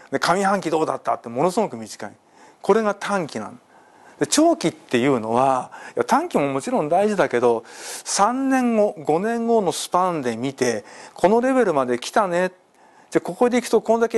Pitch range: 145-230 Hz